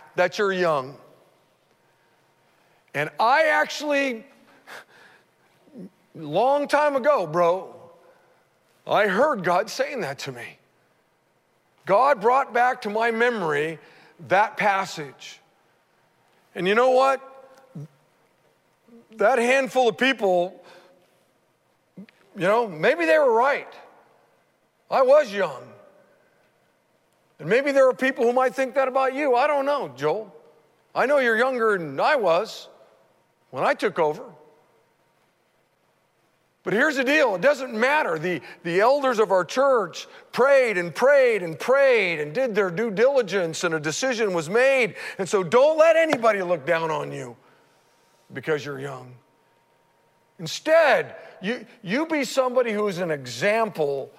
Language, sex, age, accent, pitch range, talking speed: English, male, 50-69, American, 175-270 Hz, 130 wpm